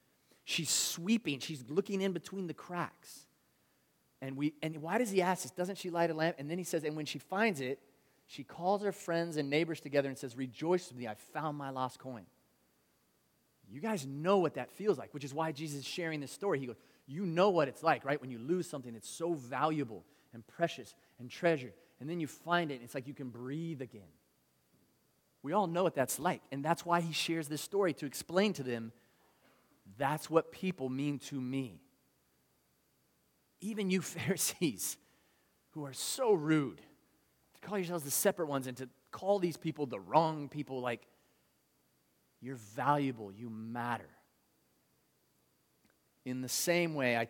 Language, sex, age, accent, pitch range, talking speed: English, male, 30-49, American, 120-165 Hz, 185 wpm